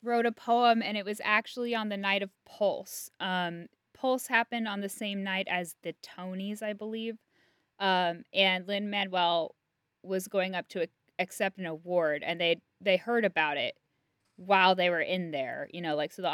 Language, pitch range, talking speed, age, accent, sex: English, 175-210 Hz, 185 wpm, 10-29, American, female